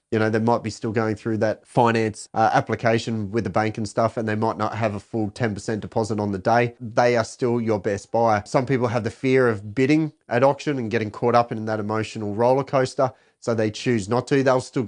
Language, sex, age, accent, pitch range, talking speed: English, male, 30-49, Australian, 110-130 Hz, 240 wpm